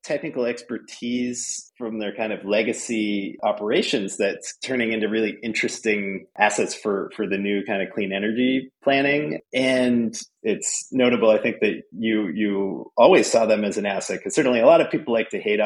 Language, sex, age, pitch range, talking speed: English, male, 30-49, 100-130 Hz, 175 wpm